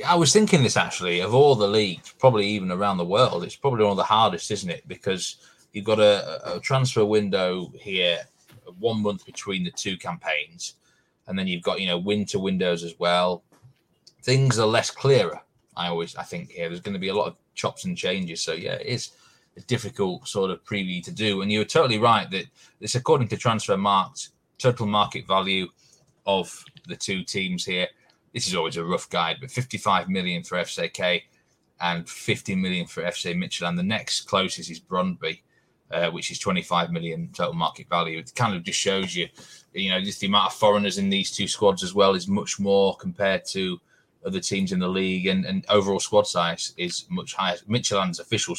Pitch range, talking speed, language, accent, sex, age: 95-130 Hz, 200 wpm, English, British, male, 20-39